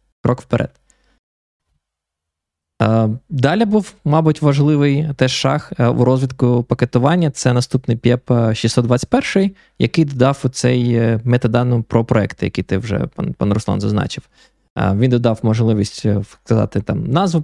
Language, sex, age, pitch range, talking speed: Ukrainian, male, 20-39, 110-140 Hz, 115 wpm